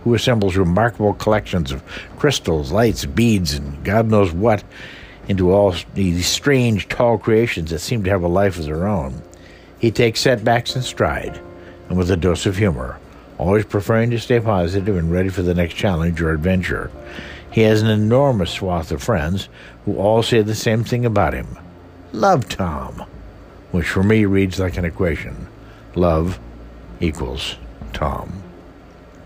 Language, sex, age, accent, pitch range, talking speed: English, male, 60-79, American, 85-105 Hz, 160 wpm